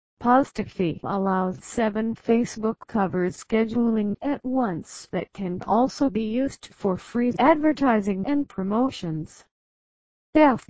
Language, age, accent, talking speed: English, 50-69, American, 105 wpm